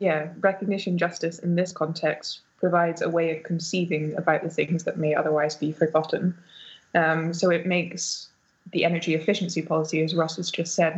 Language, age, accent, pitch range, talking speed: English, 20-39, British, 160-175 Hz, 175 wpm